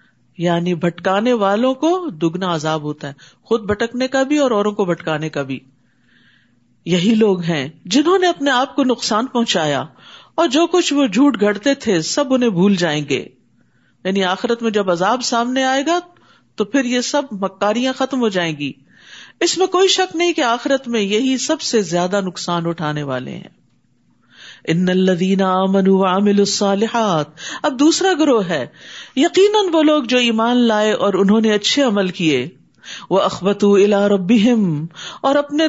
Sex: female